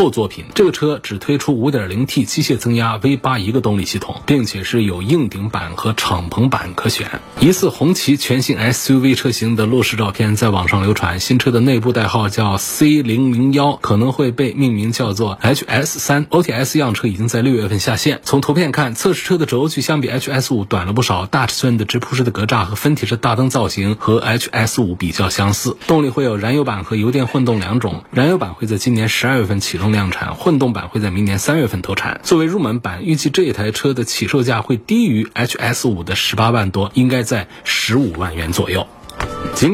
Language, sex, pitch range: Chinese, male, 105-135 Hz